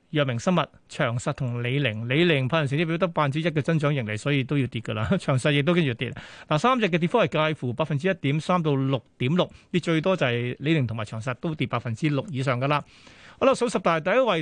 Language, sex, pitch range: Chinese, male, 135-180 Hz